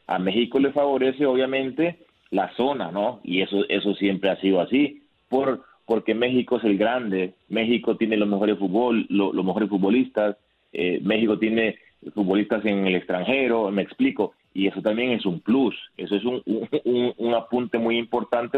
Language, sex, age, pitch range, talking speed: Spanish, male, 30-49, 100-130 Hz, 175 wpm